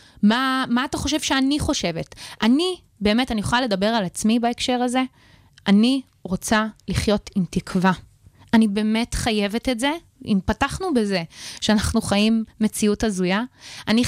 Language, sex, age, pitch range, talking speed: Hebrew, female, 20-39, 200-245 Hz, 140 wpm